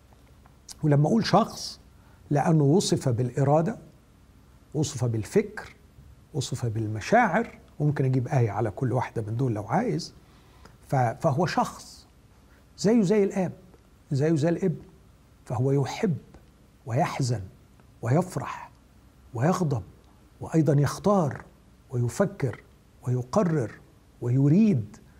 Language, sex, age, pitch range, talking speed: Arabic, male, 60-79, 125-175 Hz, 90 wpm